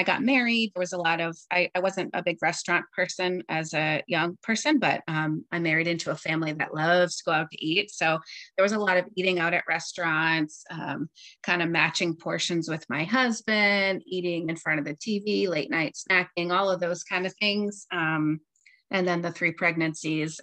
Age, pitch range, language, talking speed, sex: 30-49, 155-185 Hz, English, 210 wpm, female